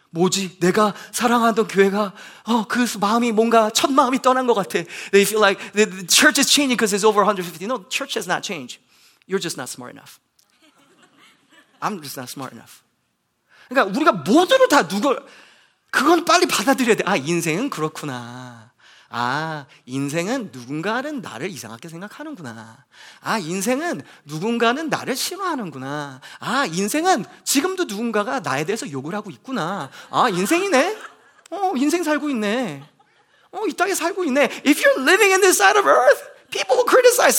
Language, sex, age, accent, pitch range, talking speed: English, male, 30-49, Korean, 205-330 Hz, 150 wpm